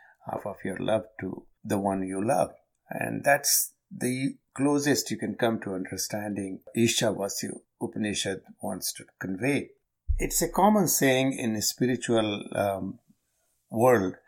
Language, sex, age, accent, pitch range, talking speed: English, male, 50-69, Indian, 100-125 Hz, 140 wpm